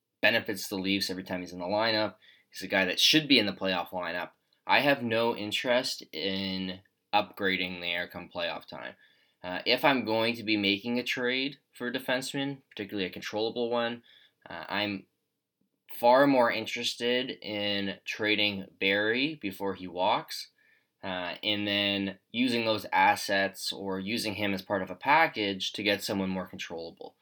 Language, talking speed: English, 170 wpm